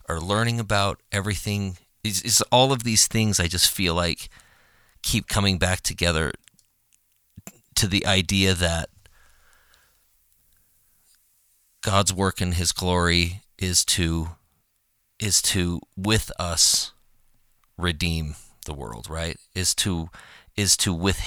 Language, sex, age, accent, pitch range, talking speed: English, male, 40-59, American, 85-100 Hz, 120 wpm